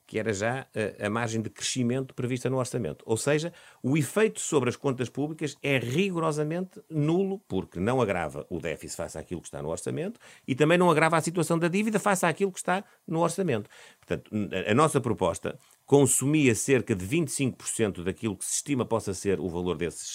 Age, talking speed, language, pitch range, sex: 50-69, 190 wpm, Portuguese, 95-140 Hz, male